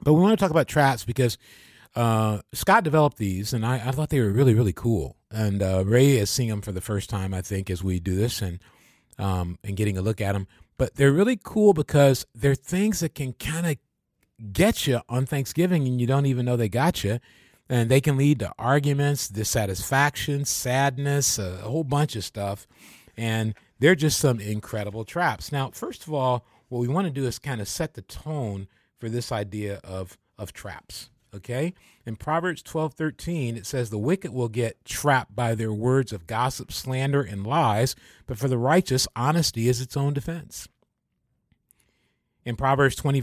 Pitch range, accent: 110-145 Hz, American